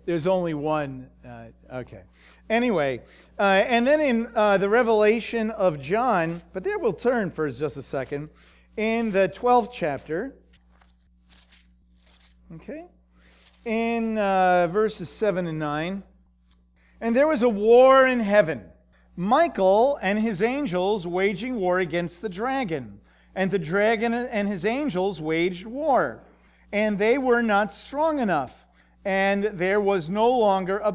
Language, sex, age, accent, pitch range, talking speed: English, male, 50-69, American, 170-230 Hz, 135 wpm